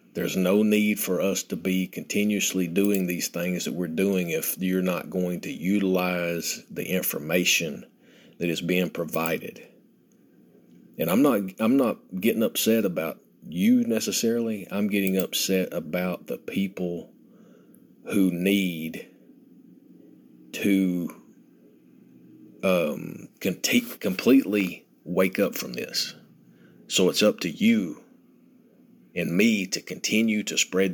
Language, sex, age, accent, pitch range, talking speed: English, male, 40-59, American, 90-105 Hz, 120 wpm